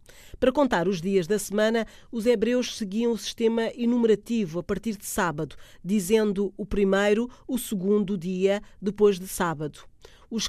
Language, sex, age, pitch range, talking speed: Portuguese, female, 40-59, 175-220 Hz, 150 wpm